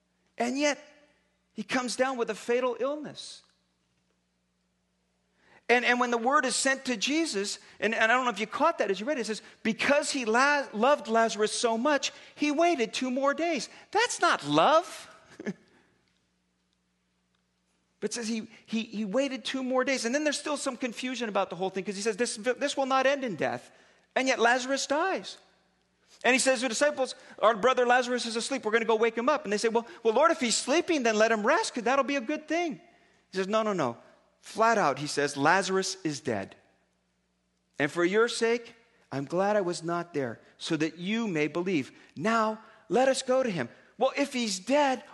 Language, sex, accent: English, male, American